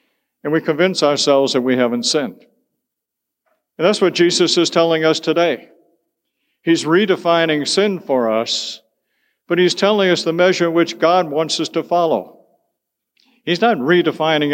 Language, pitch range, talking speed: English, 145-175 Hz, 150 wpm